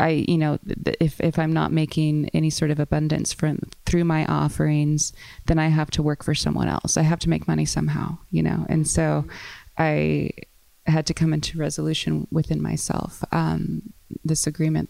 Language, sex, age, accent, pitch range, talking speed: English, female, 20-39, American, 150-165 Hz, 180 wpm